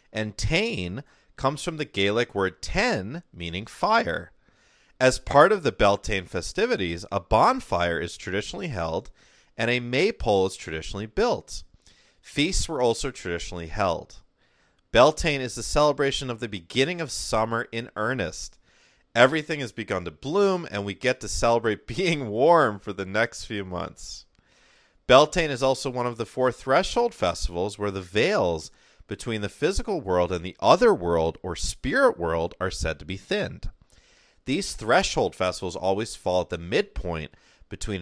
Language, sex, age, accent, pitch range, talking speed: English, male, 30-49, American, 95-135 Hz, 155 wpm